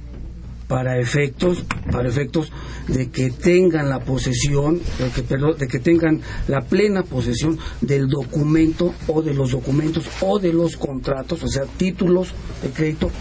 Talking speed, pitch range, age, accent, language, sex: 150 wpm, 125-160 Hz, 50-69, Mexican, Spanish, male